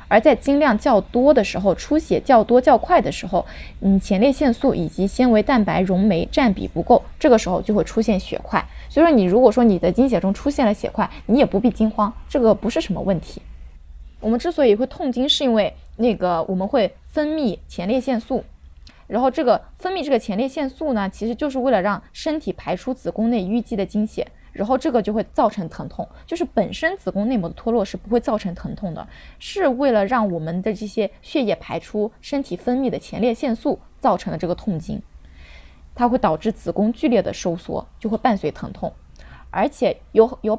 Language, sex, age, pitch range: Chinese, female, 20-39, 195-255 Hz